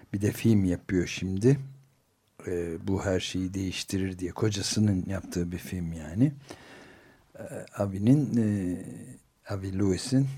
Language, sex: Turkish, male